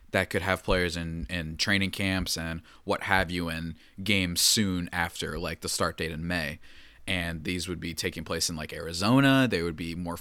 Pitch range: 85-115 Hz